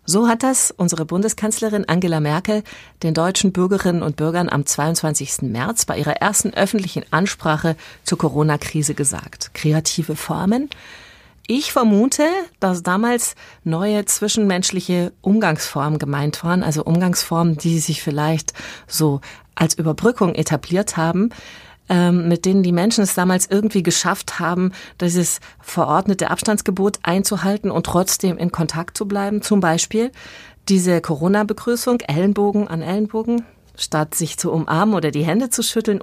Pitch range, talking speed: 165-210 Hz, 130 wpm